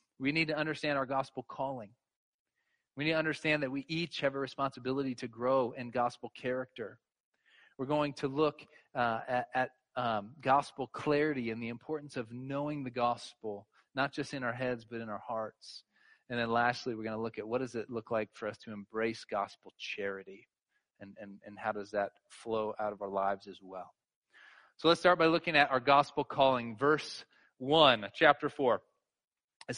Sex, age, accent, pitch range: male, 30-49, American, 125-195 Hz